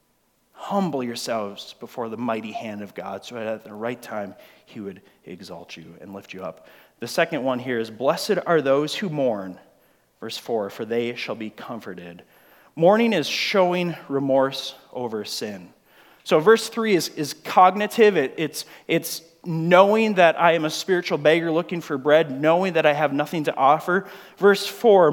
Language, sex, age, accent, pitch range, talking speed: English, male, 30-49, American, 140-195 Hz, 170 wpm